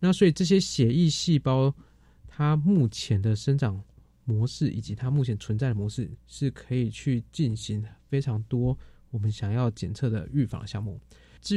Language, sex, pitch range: Chinese, male, 110-135 Hz